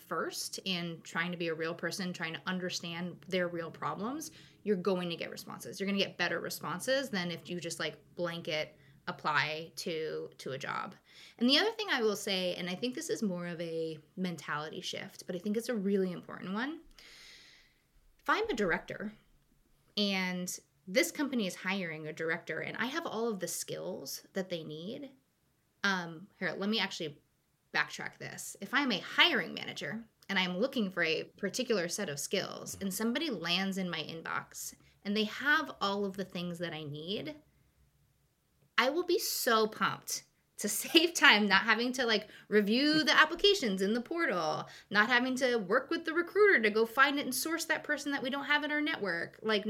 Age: 20-39